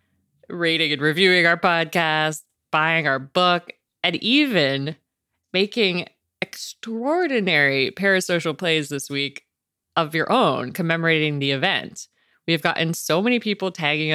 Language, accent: English, American